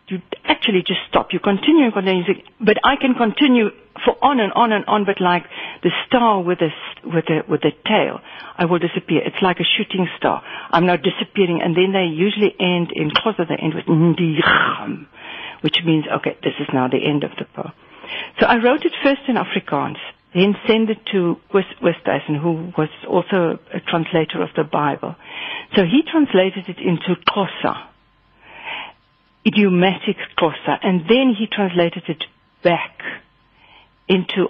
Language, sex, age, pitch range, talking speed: English, female, 60-79, 170-210 Hz, 170 wpm